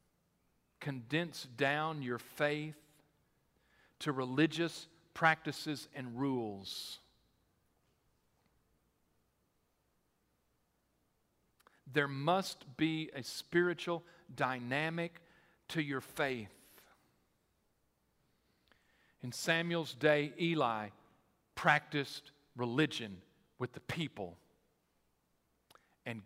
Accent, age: American, 50-69